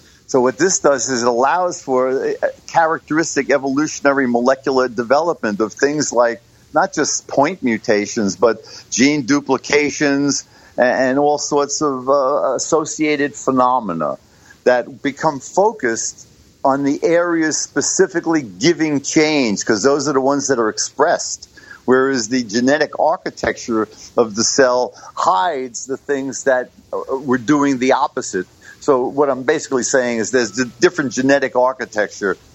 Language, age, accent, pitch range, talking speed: English, 50-69, American, 120-145 Hz, 135 wpm